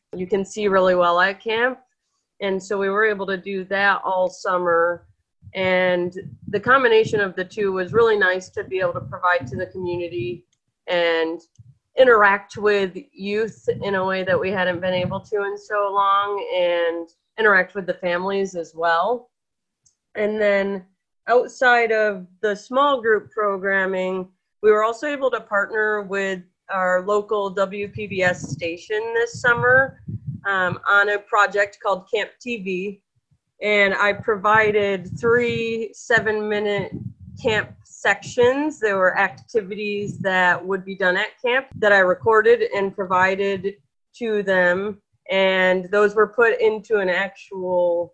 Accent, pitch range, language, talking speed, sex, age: American, 180-215 Hz, English, 145 wpm, female, 30-49